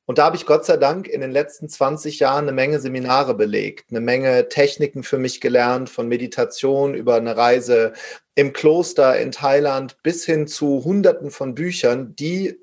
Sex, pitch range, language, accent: male, 125-165 Hz, German, German